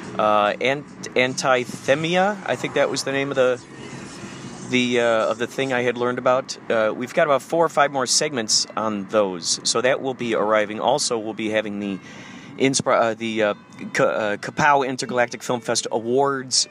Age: 30-49